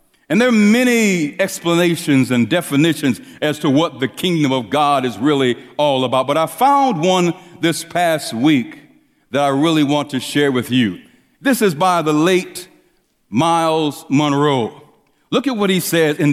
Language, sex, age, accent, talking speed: English, male, 60-79, American, 170 wpm